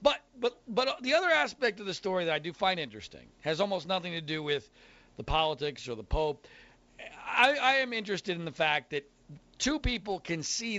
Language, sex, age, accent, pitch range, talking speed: English, male, 50-69, American, 180-245 Hz, 205 wpm